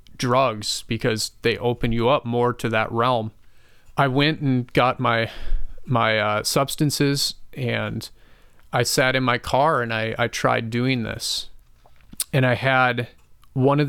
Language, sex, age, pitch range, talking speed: English, male, 30-49, 115-140 Hz, 150 wpm